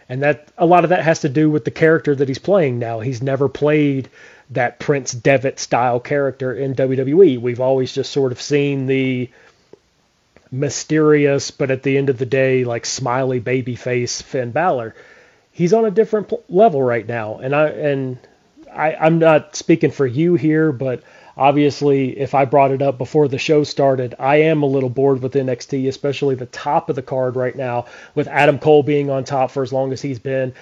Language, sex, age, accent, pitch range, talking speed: English, male, 30-49, American, 130-150 Hz, 200 wpm